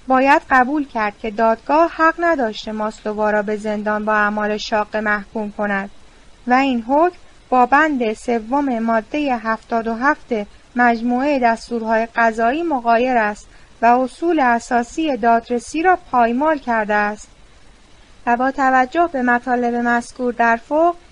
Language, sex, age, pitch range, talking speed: Persian, female, 10-29, 225-285 Hz, 130 wpm